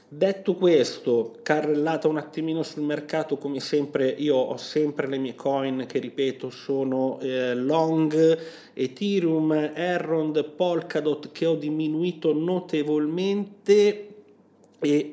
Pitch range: 130-155 Hz